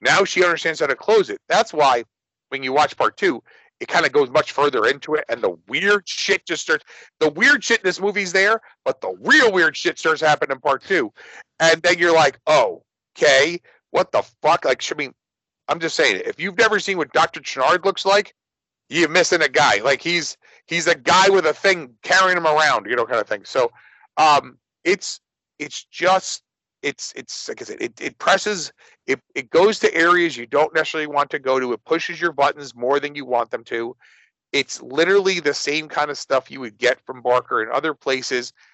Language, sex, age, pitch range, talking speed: English, male, 50-69, 145-200 Hz, 215 wpm